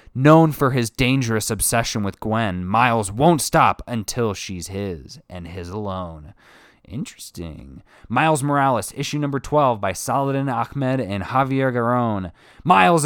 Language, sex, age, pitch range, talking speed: English, male, 20-39, 100-145 Hz, 135 wpm